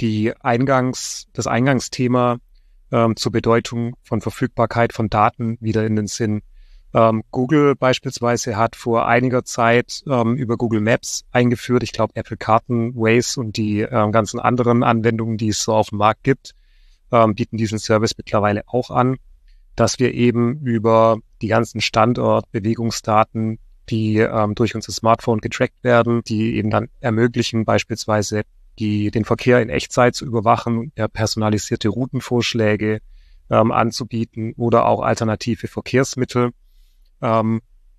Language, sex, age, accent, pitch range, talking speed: German, male, 30-49, German, 110-120 Hz, 130 wpm